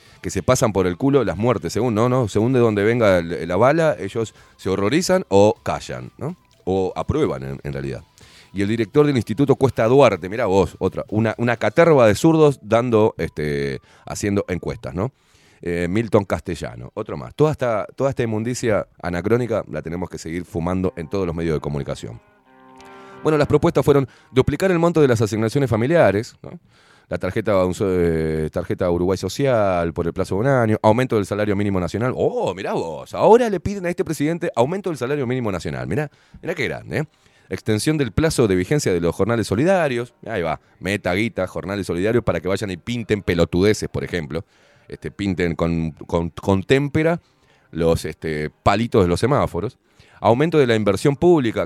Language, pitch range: Spanish, 85-130 Hz